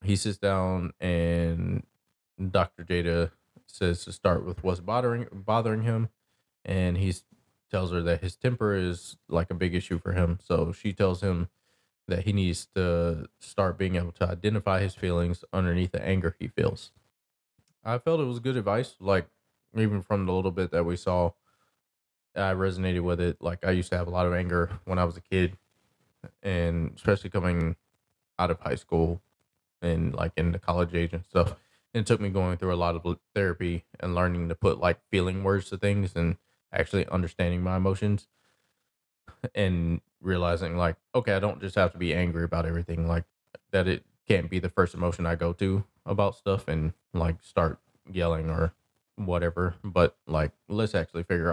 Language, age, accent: English, 20-39, American